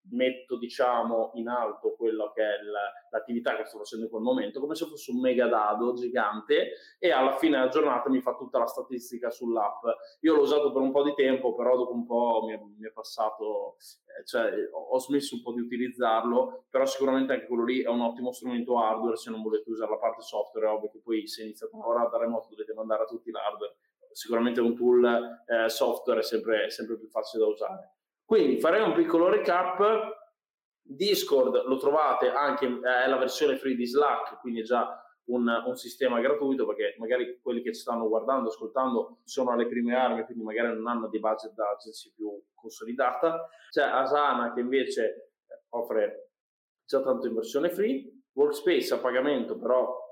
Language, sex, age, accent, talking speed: Italian, male, 20-39, native, 190 wpm